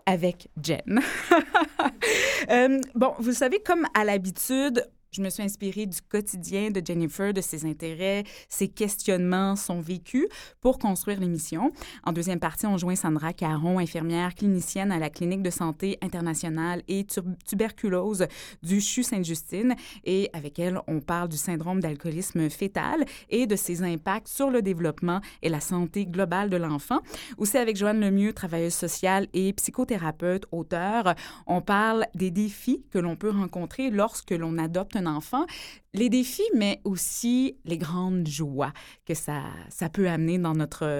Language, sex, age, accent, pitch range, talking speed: French, female, 20-39, Canadian, 170-220 Hz, 155 wpm